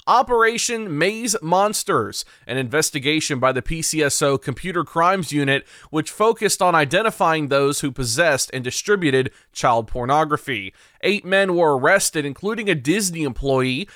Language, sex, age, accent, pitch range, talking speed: English, male, 20-39, American, 145-205 Hz, 130 wpm